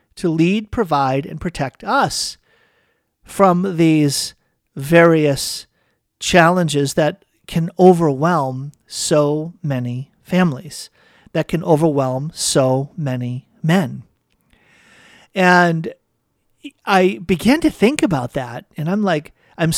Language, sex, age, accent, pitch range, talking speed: English, male, 50-69, American, 145-185 Hz, 100 wpm